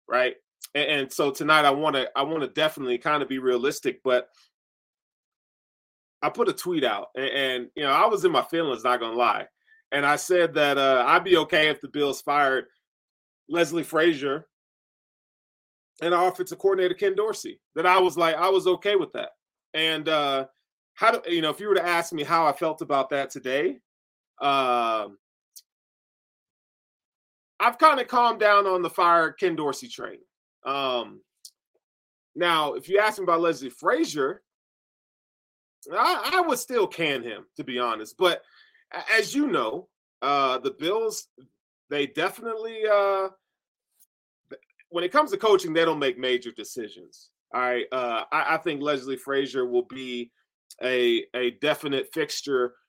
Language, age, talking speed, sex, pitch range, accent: English, 30-49, 165 wpm, male, 135-215 Hz, American